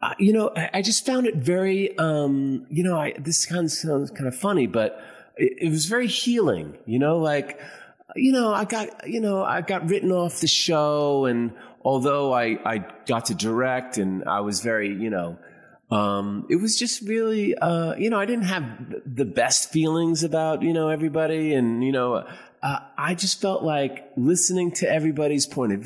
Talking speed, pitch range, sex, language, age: 195 wpm, 125-175 Hz, male, English, 30-49